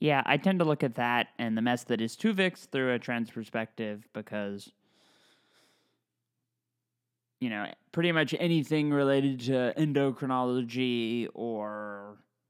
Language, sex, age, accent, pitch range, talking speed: English, male, 20-39, American, 125-170 Hz, 130 wpm